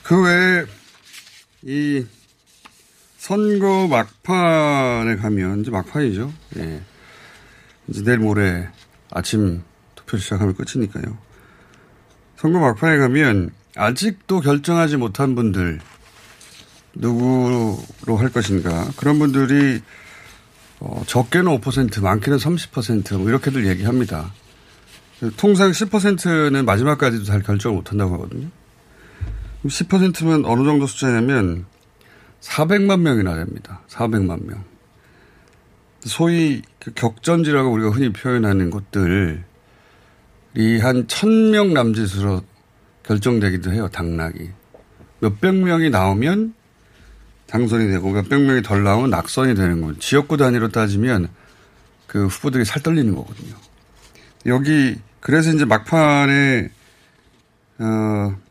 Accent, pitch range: native, 100-145 Hz